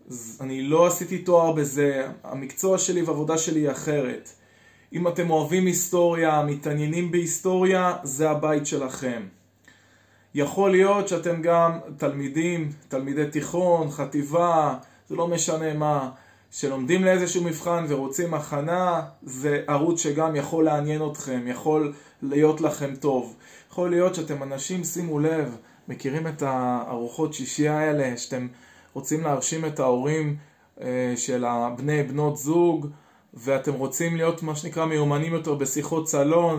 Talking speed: 125 wpm